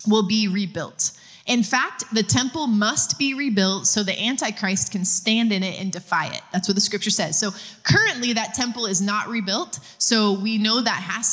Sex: female